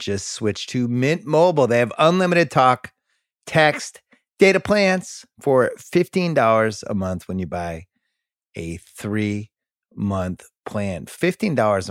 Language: English